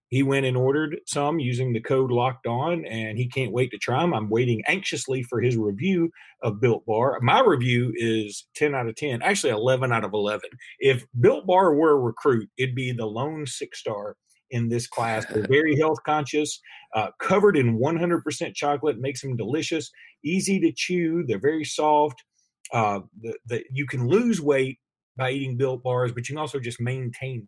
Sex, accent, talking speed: male, American, 190 wpm